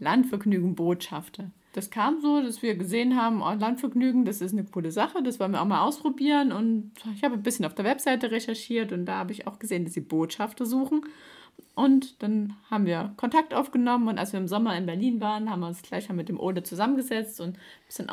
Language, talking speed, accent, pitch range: German, 215 wpm, German, 185-230 Hz